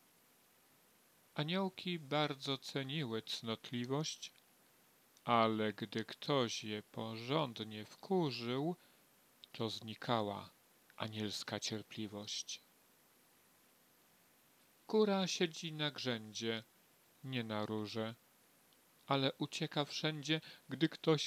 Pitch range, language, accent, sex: 115-160 Hz, Polish, native, male